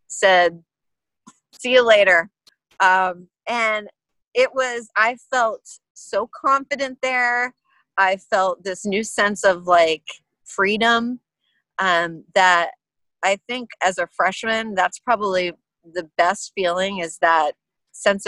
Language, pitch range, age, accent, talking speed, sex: English, 175-225 Hz, 30-49, American, 120 wpm, female